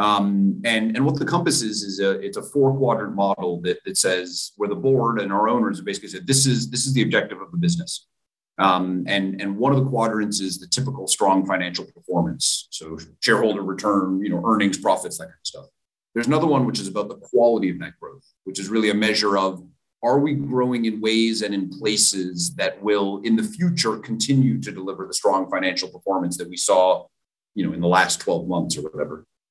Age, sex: 30-49, male